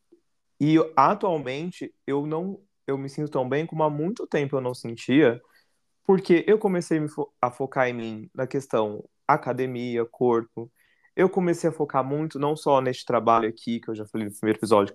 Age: 20-39